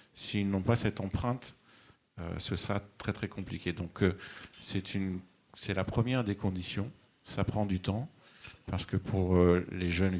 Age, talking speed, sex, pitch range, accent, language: 50-69, 175 wpm, male, 90-110 Hz, French, French